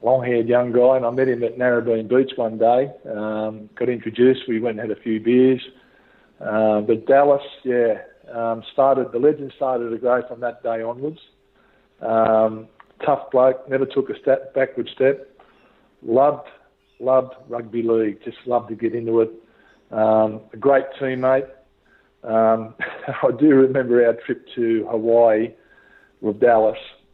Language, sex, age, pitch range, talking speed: English, male, 50-69, 115-130 Hz, 155 wpm